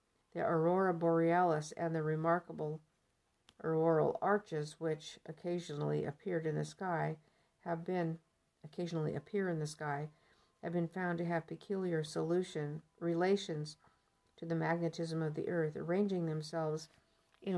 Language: English